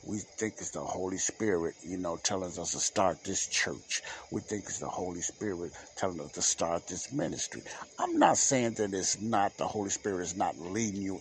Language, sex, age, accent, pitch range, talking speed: English, male, 60-79, American, 95-115 Hz, 210 wpm